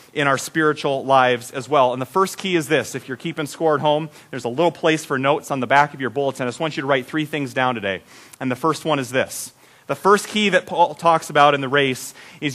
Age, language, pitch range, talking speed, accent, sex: 30-49, English, 150-205 Hz, 275 wpm, American, male